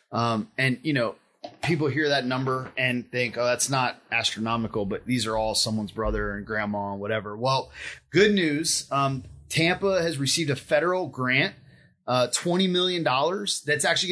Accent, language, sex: American, English, male